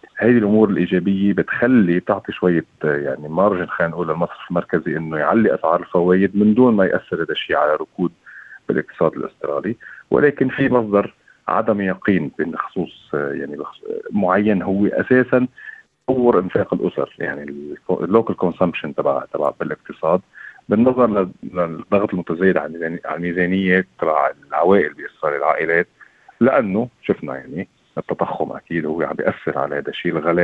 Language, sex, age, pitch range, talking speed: Arabic, male, 40-59, 85-110 Hz, 130 wpm